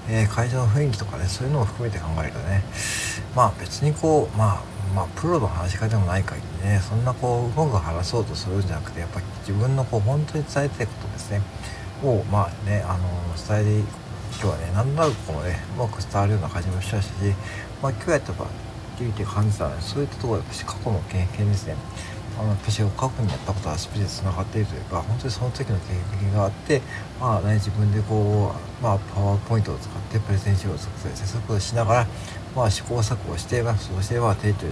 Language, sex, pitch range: Japanese, male, 100-115 Hz